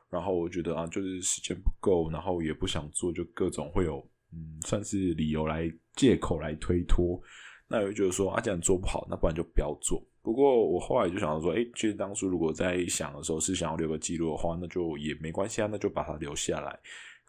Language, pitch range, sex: Chinese, 75-90 Hz, male